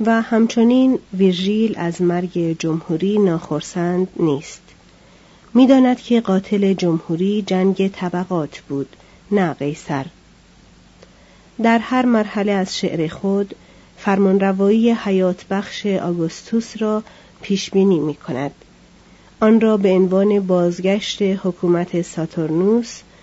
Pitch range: 170-210 Hz